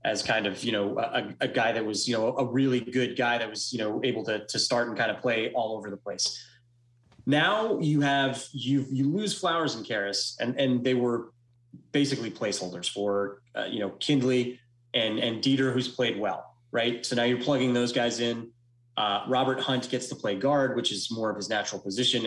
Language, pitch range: English, 110-130 Hz